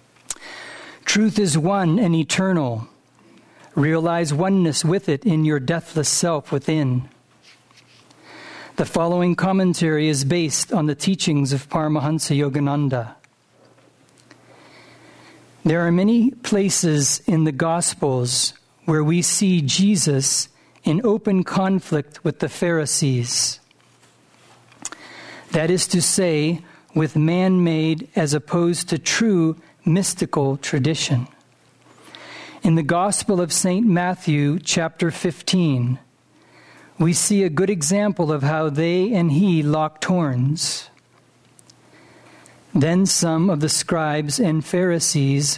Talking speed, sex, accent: 105 wpm, male, American